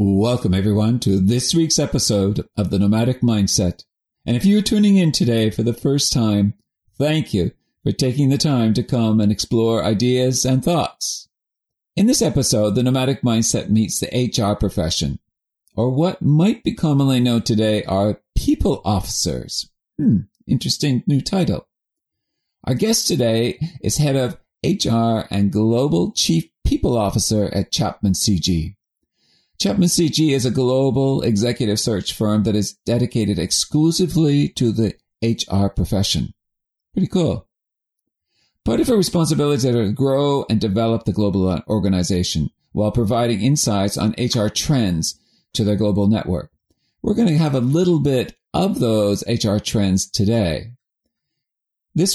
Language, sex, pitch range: English, male, 105-135 Hz